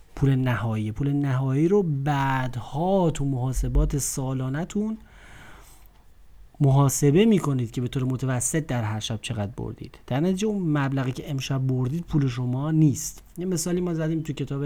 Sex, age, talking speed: male, 30-49, 155 wpm